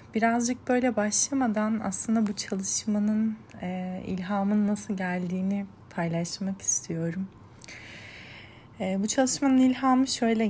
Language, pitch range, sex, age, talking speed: Turkish, 175-215 Hz, female, 30-49, 85 wpm